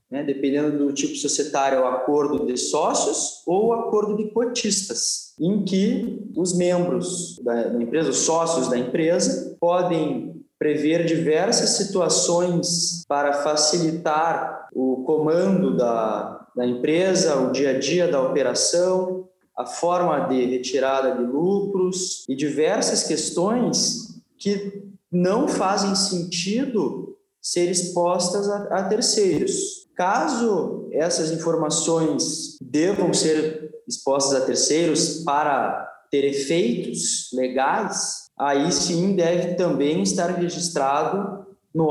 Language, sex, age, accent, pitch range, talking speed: Portuguese, male, 20-39, Brazilian, 145-185 Hz, 110 wpm